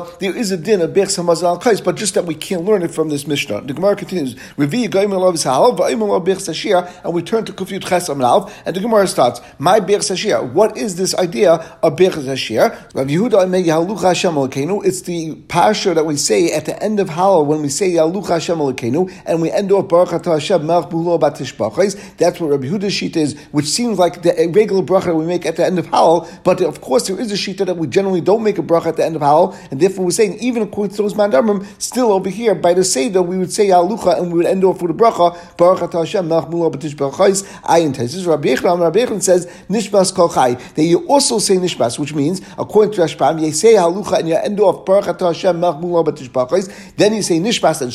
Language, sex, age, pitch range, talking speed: English, male, 50-69, 165-200 Hz, 225 wpm